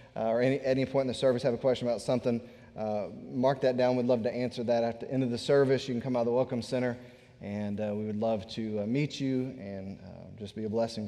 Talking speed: 275 wpm